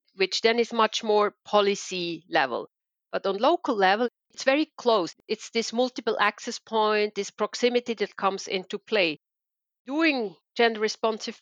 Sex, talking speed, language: female, 145 wpm, English